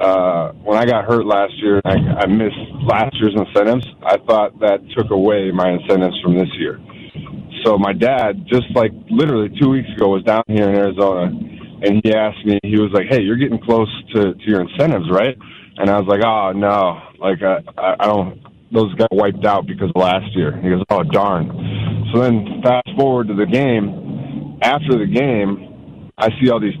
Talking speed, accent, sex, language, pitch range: 195 wpm, American, male, English, 100-125 Hz